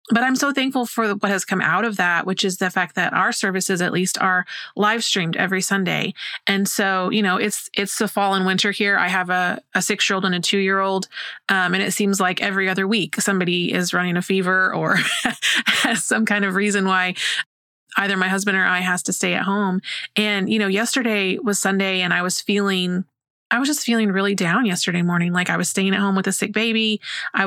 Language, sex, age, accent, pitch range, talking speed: English, female, 30-49, American, 185-210 Hz, 225 wpm